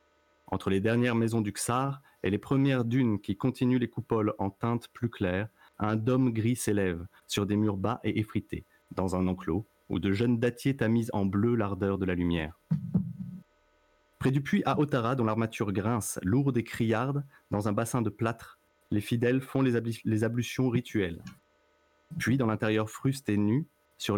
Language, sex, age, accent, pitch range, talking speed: French, male, 30-49, French, 95-120 Hz, 180 wpm